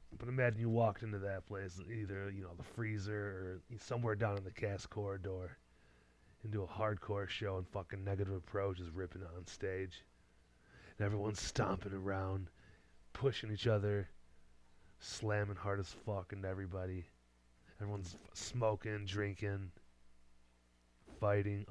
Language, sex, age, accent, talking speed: English, male, 30-49, American, 135 wpm